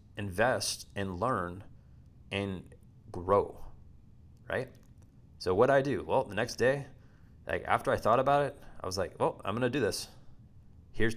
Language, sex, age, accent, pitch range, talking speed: English, male, 20-39, American, 100-120 Hz, 155 wpm